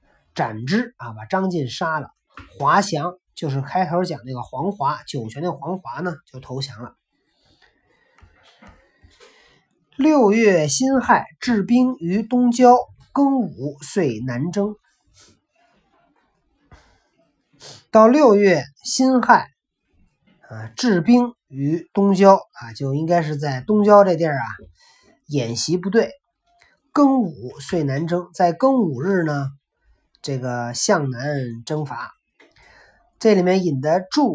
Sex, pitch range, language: male, 145-230 Hz, Chinese